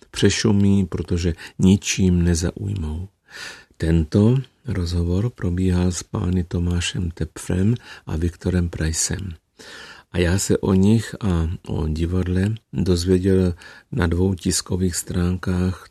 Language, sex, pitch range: Czech, male, 85-95 Hz